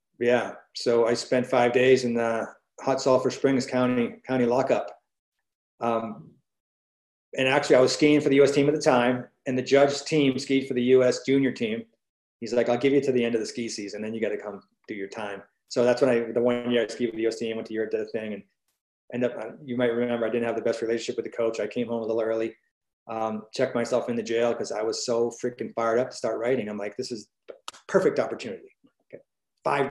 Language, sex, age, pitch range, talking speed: English, male, 30-49, 120-145 Hz, 245 wpm